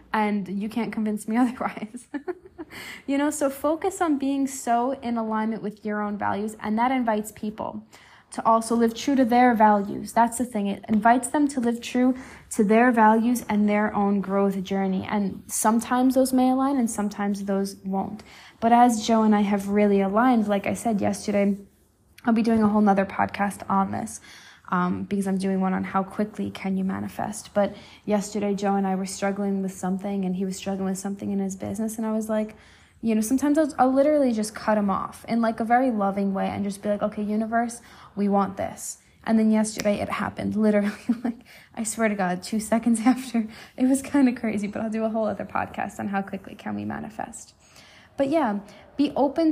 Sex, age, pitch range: female, 10-29, 200-240 Hz